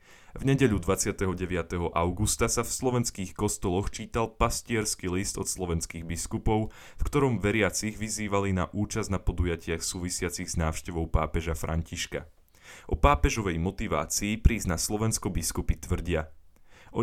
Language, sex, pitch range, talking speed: Slovak, male, 85-110 Hz, 125 wpm